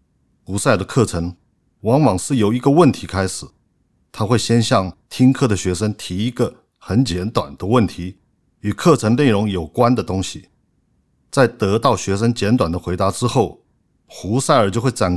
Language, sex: Chinese, male